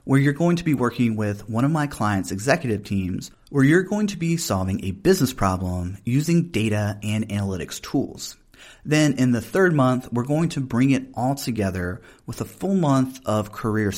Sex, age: male, 30-49